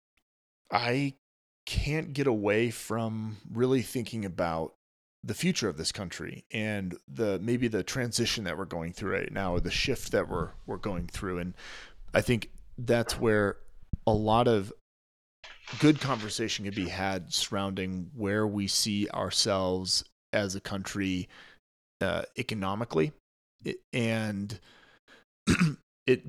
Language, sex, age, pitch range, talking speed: English, male, 30-49, 95-120 Hz, 130 wpm